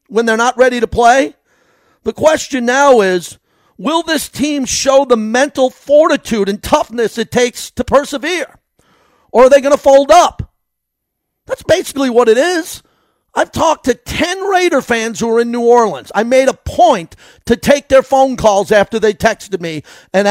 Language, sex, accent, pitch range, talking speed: English, male, American, 195-250 Hz, 175 wpm